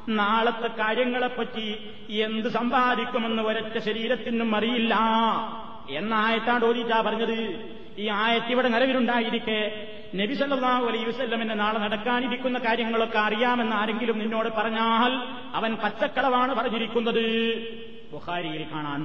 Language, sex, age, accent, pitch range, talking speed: Malayalam, male, 30-49, native, 195-230 Hz, 75 wpm